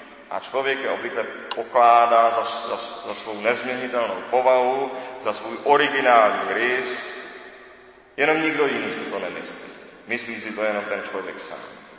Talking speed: 140 wpm